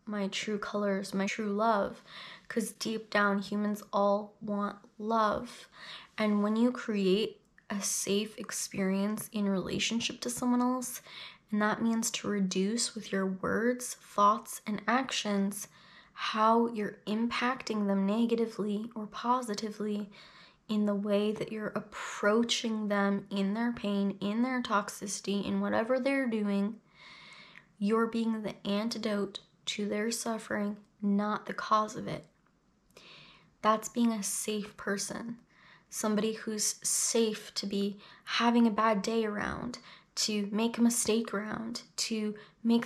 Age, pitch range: 10-29, 200-230 Hz